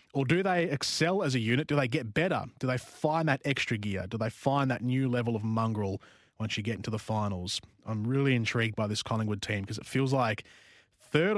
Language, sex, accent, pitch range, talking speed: English, male, Australian, 115-140 Hz, 225 wpm